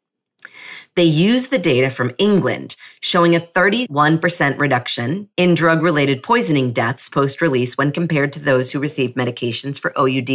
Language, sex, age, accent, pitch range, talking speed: English, female, 40-59, American, 135-185 Hz, 140 wpm